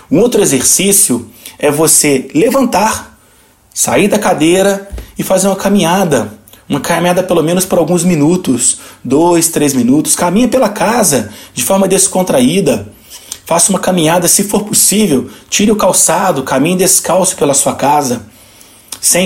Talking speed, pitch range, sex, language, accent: 135 wpm, 150-200 Hz, male, Portuguese, Brazilian